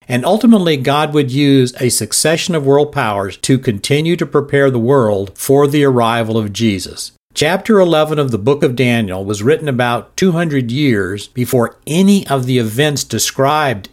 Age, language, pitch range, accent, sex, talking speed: 50-69, English, 115-150 Hz, American, male, 170 wpm